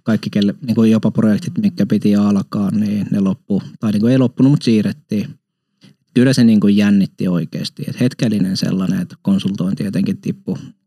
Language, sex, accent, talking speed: Finnish, male, native, 175 wpm